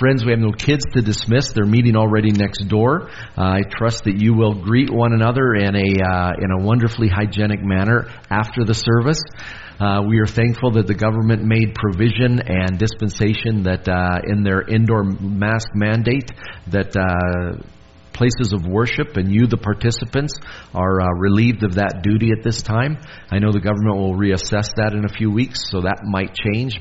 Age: 40-59